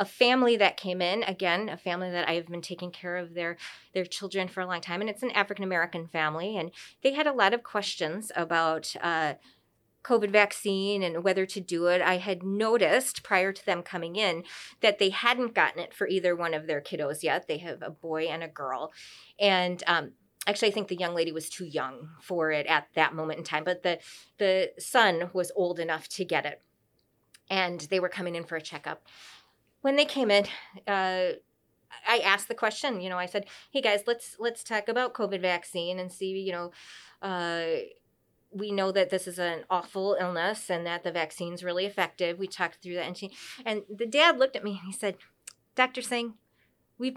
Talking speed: 210 wpm